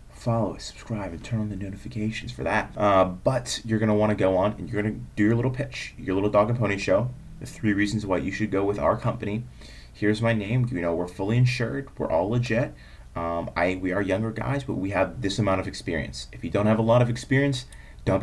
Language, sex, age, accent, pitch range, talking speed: English, male, 30-49, American, 90-115 Hz, 245 wpm